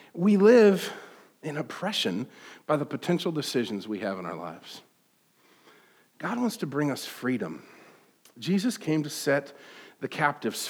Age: 40-59